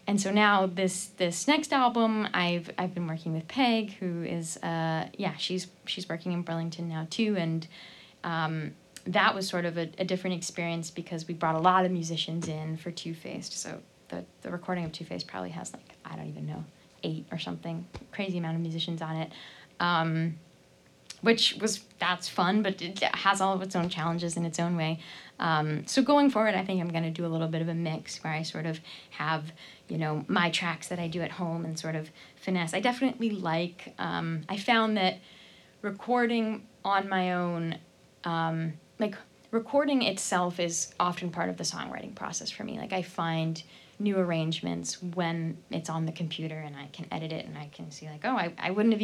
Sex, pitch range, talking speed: female, 160-195 Hz, 205 wpm